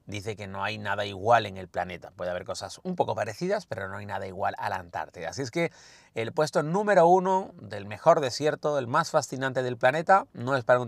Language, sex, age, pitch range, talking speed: Spanish, male, 30-49, 100-145 Hz, 230 wpm